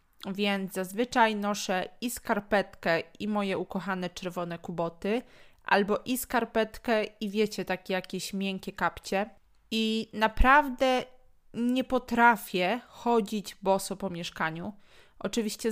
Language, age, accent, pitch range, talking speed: Polish, 20-39, native, 190-235 Hz, 105 wpm